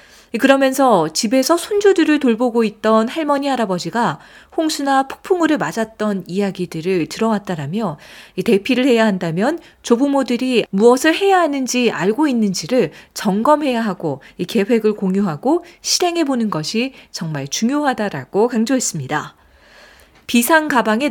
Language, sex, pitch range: Korean, female, 200-280 Hz